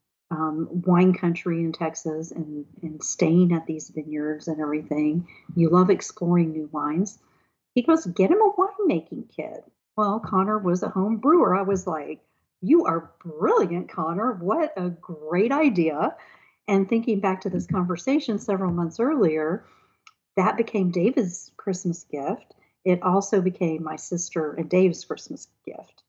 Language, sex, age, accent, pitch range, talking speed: English, female, 50-69, American, 165-195 Hz, 150 wpm